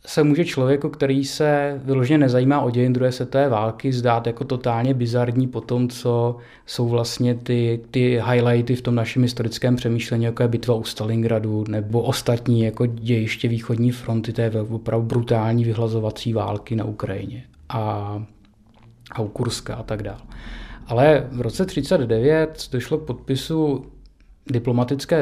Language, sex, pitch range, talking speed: Czech, male, 115-135 Hz, 145 wpm